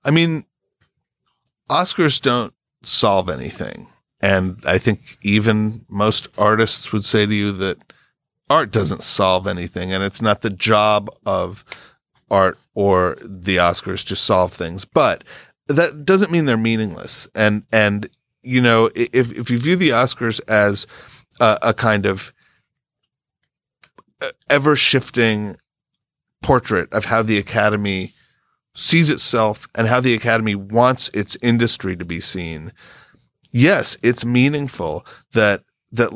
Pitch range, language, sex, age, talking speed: 100-125 Hz, English, male, 40-59, 130 wpm